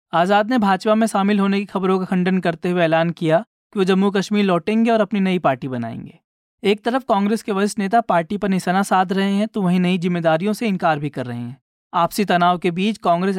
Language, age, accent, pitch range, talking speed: Hindi, 20-39, native, 170-210 Hz, 230 wpm